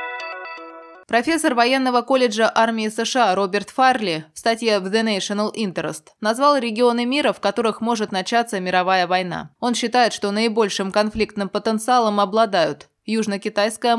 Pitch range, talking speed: 185-235 Hz, 125 wpm